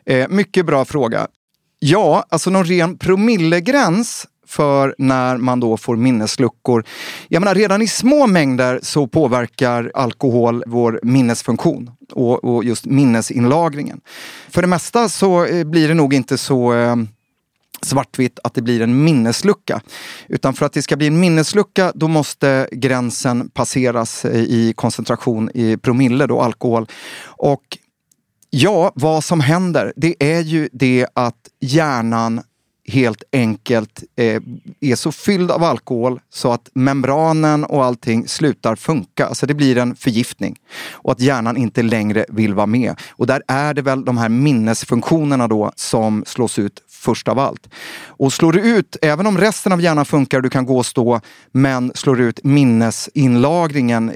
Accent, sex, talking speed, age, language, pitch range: native, male, 150 wpm, 30-49, Swedish, 120-155 Hz